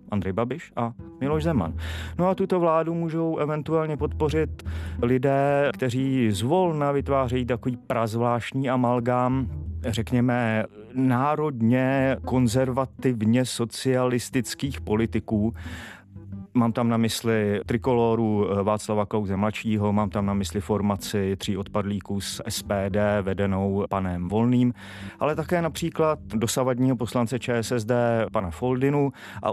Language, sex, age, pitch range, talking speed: Czech, male, 30-49, 100-135 Hz, 110 wpm